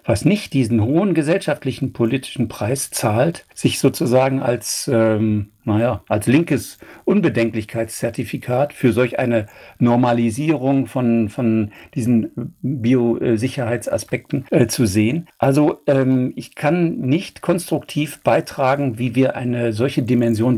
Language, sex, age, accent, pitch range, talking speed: German, male, 60-79, German, 115-145 Hz, 115 wpm